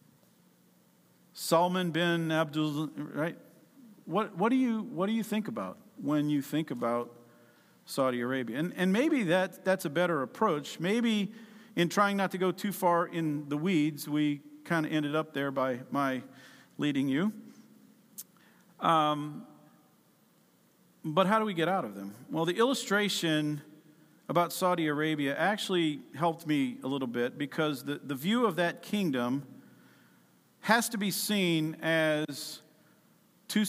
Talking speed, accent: 145 wpm, American